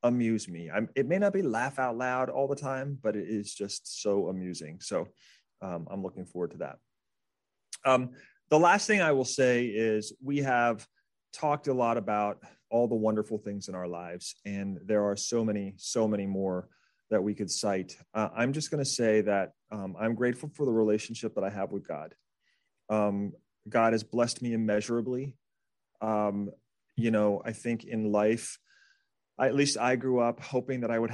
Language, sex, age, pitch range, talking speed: English, male, 30-49, 100-120 Hz, 190 wpm